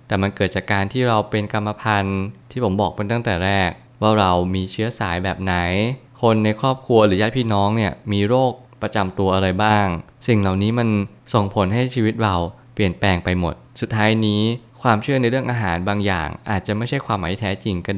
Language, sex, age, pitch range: Thai, male, 20-39, 95-115 Hz